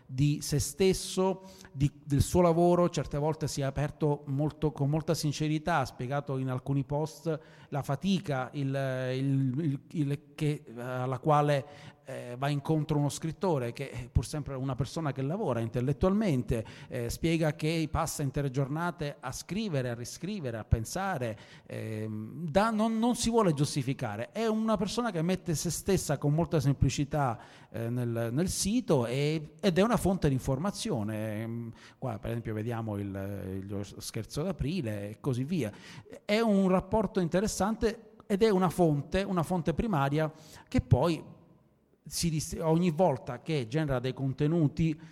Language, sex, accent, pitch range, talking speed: Italian, male, native, 130-165 Hz, 155 wpm